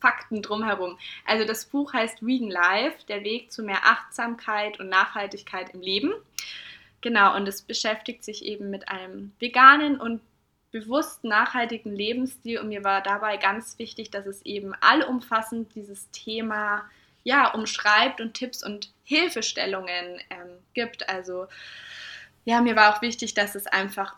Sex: female